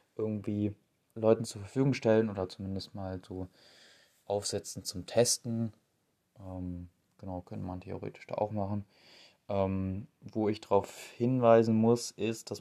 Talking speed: 135 wpm